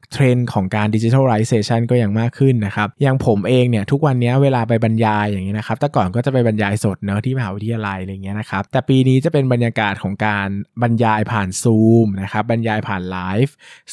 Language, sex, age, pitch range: Thai, male, 20-39, 105-130 Hz